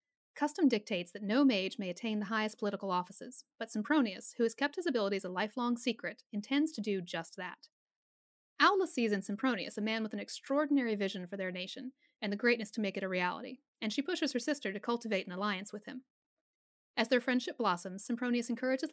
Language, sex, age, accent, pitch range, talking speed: English, female, 30-49, American, 205-270 Hz, 205 wpm